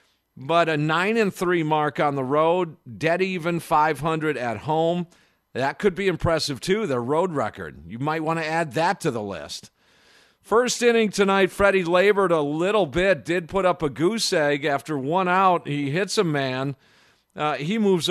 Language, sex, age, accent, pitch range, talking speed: English, male, 50-69, American, 140-180 Hz, 185 wpm